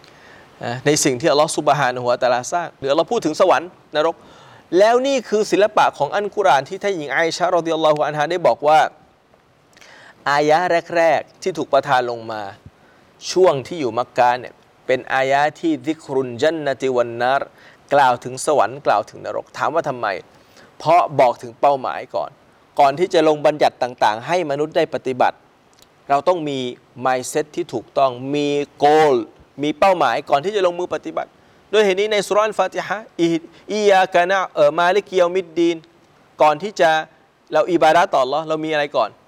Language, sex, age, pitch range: Thai, male, 20-39, 135-180 Hz